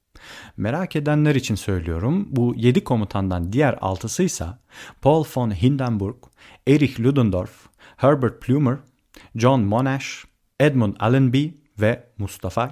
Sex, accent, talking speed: male, native, 105 wpm